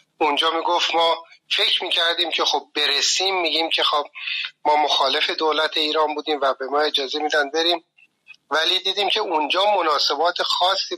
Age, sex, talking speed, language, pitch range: 30-49, male, 155 wpm, Persian, 150-175 Hz